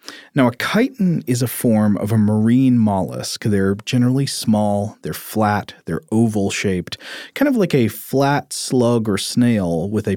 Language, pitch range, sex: English, 100-125 Hz, male